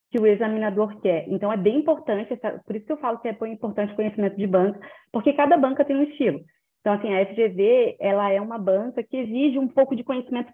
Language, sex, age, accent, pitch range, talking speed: Portuguese, female, 20-39, Brazilian, 185-235 Hz, 240 wpm